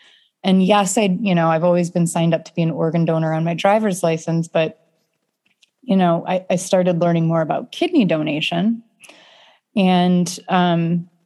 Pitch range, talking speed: 165-200 Hz, 170 wpm